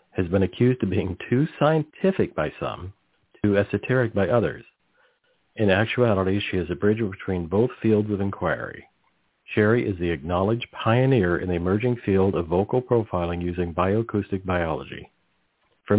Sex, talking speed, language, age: male, 150 wpm, English, 50-69